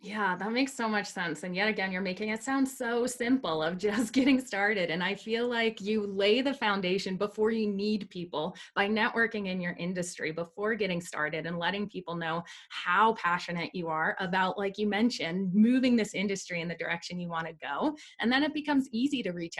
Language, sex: English, female